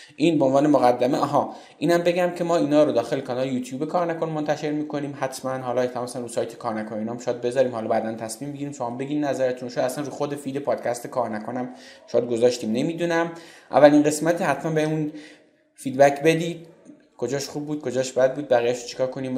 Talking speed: 185 wpm